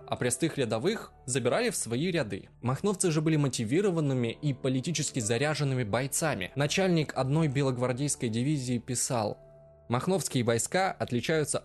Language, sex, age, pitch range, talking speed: Russian, male, 20-39, 115-160 Hz, 120 wpm